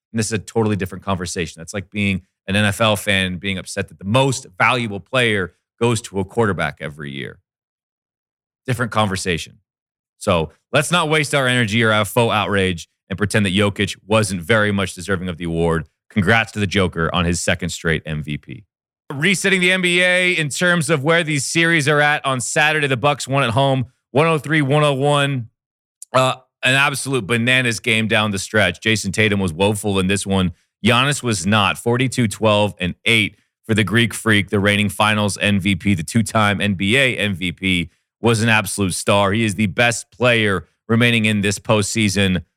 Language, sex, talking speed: English, male, 175 wpm